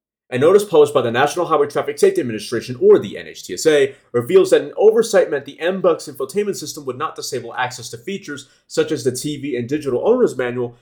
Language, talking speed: English, 200 wpm